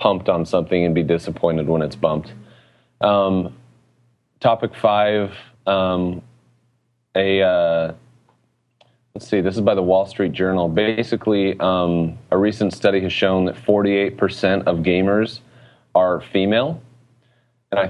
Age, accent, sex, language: 30-49, American, male, English